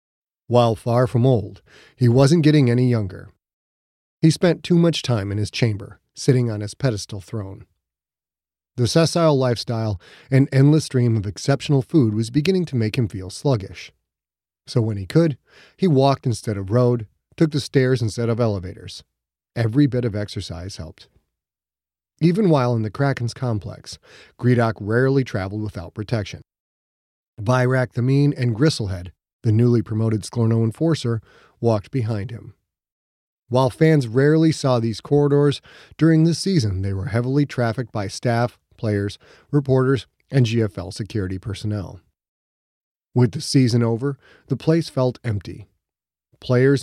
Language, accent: English, American